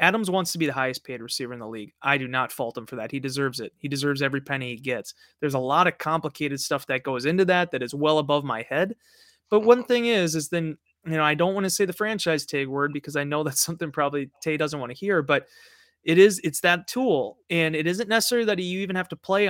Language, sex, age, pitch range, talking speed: English, male, 30-49, 145-175 Hz, 270 wpm